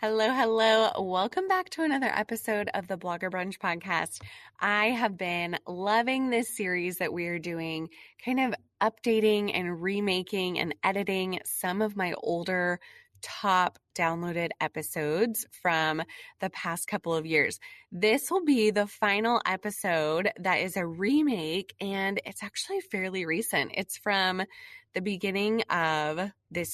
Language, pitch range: English, 170-215 Hz